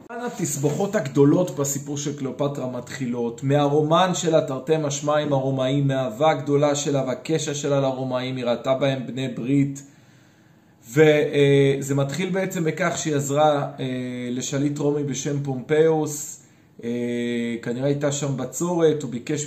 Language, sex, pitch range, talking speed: Hebrew, male, 140-165 Hz, 115 wpm